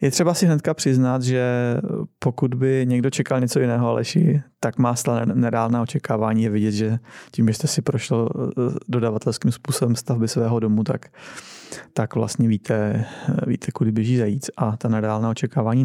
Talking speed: 160 wpm